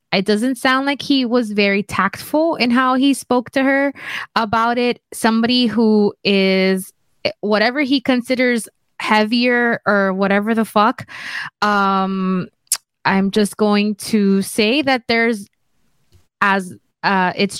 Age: 20-39